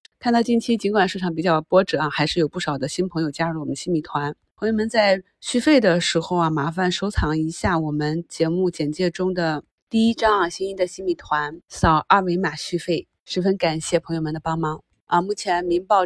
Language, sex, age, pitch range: Chinese, female, 30-49, 165-220 Hz